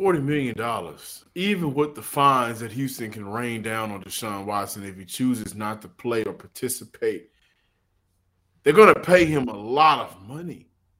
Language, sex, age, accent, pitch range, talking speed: English, male, 20-39, American, 100-150 Hz, 170 wpm